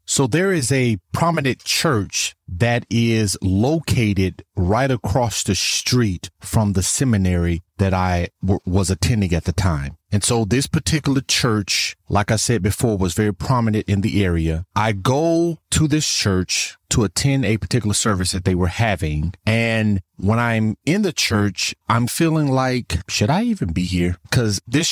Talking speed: 165 wpm